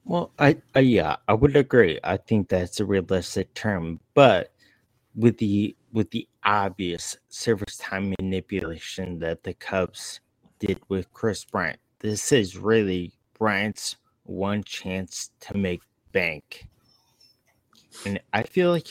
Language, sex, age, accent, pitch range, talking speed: English, male, 20-39, American, 90-115 Hz, 135 wpm